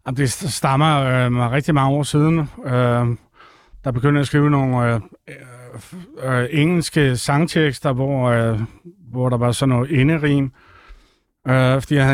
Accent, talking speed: native, 150 wpm